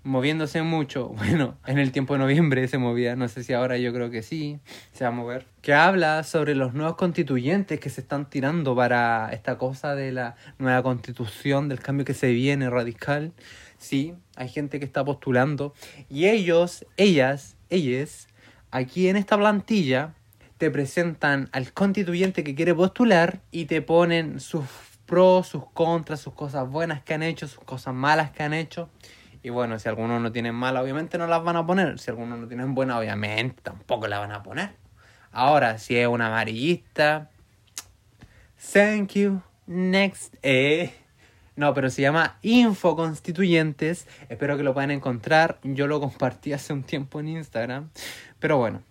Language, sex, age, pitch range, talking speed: Spanish, male, 20-39, 125-165 Hz, 170 wpm